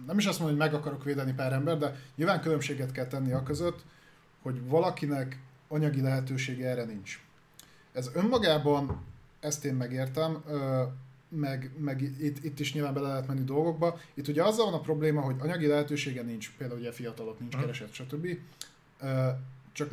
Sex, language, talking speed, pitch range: male, Hungarian, 165 wpm, 130-150 Hz